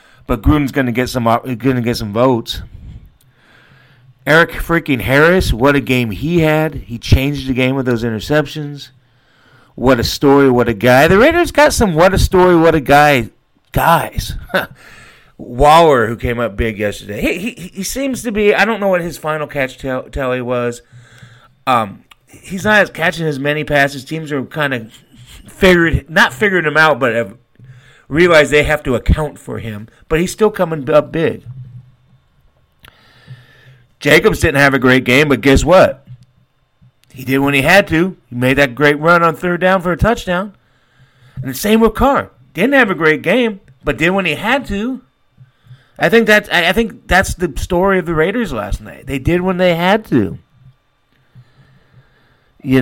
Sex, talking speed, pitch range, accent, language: male, 175 wpm, 125-175 Hz, American, English